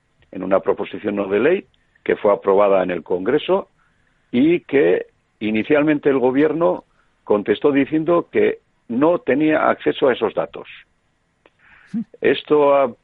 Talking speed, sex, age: 130 wpm, male, 50-69